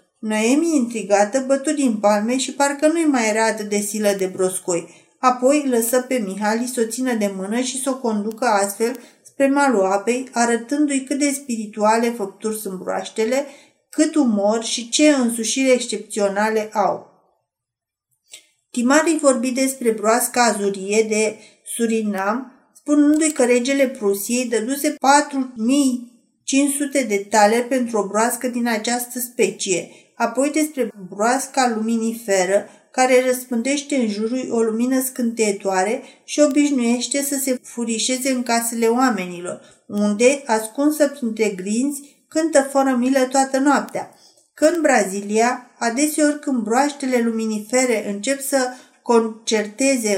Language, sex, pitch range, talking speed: Romanian, female, 215-270 Hz, 120 wpm